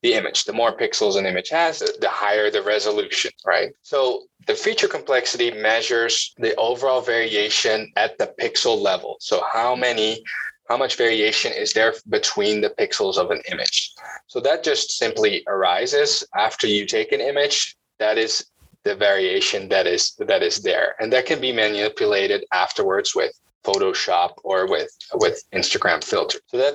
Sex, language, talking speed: male, English, 160 wpm